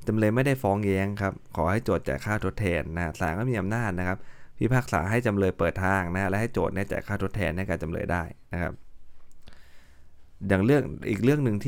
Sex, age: male, 20-39